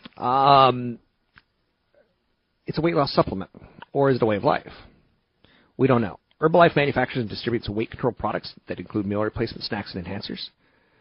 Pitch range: 100-130 Hz